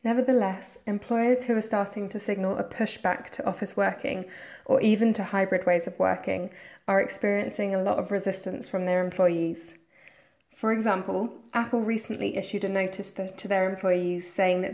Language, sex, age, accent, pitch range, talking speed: English, female, 10-29, British, 185-215 Hz, 165 wpm